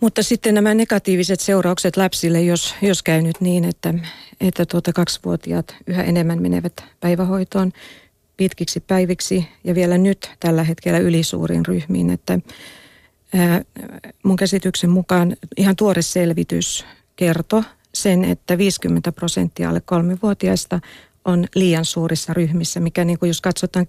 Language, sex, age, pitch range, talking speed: Finnish, female, 40-59, 170-190 Hz, 130 wpm